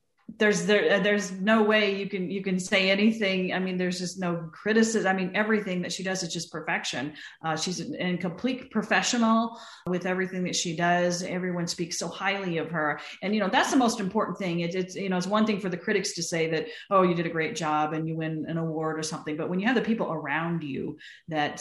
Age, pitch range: 40-59, 165-195 Hz